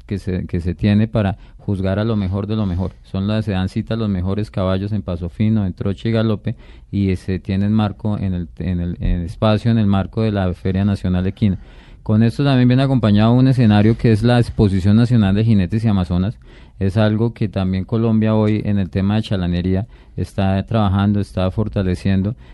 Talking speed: 210 wpm